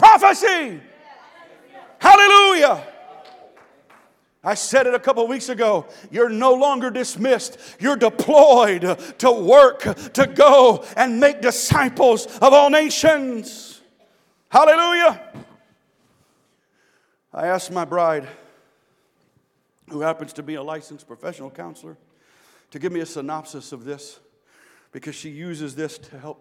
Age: 50-69